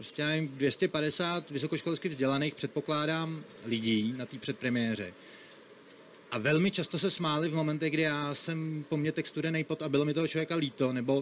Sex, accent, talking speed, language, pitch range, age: male, native, 160 wpm, Czech, 130-160 Hz, 30-49